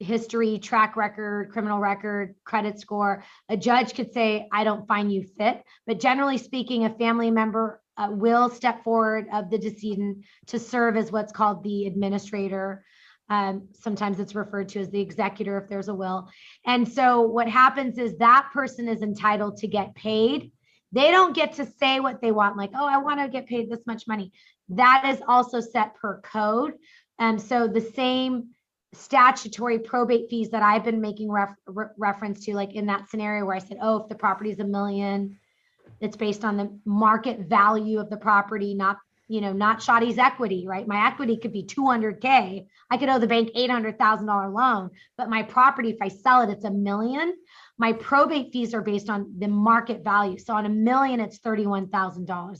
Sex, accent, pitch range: female, American, 205-240 Hz